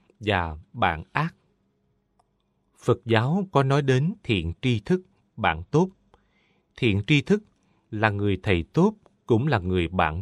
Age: 20-39